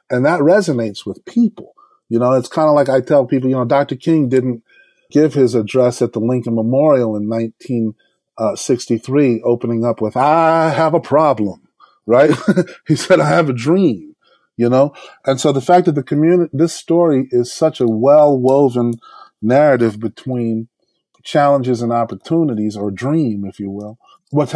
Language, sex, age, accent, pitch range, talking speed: English, male, 30-49, American, 125-165 Hz, 165 wpm